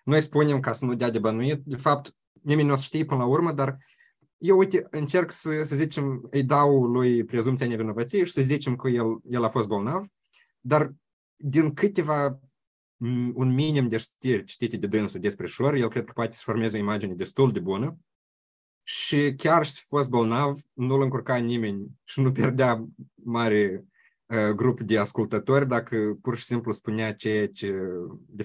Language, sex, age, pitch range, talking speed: Romanian, male, 20-39, 105-140 Hz, 180 wpm